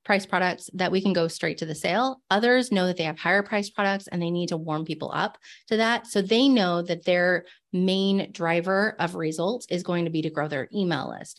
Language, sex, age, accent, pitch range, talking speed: English, female, 30-49, American, 165-195 Hz, 235 wpm